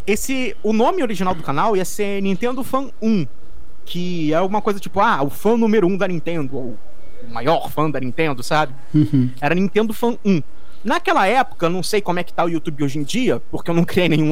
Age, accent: 20-39, Brazilian